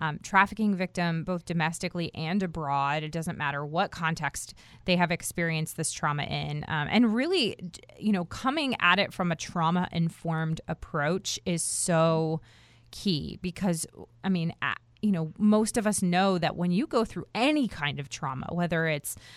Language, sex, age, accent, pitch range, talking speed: English, female, 30-49, American, 155-195 Hz, 170 wpm